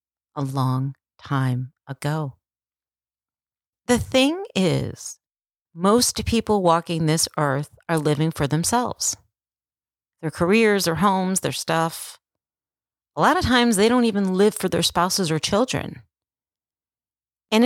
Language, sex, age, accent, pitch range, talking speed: English, female, 40-59, American, 155-205 Hz, 120 wpm